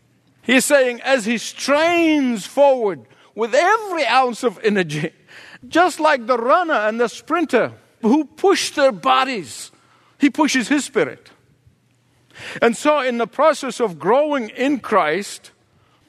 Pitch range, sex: 230-290 Hz, male